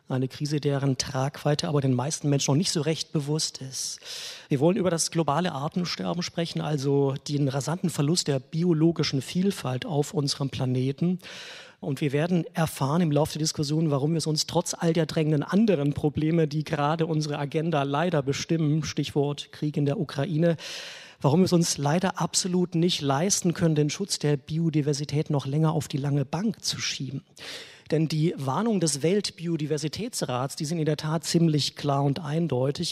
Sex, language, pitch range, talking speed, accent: male, German, 145-170 Hz, 175 wpm, German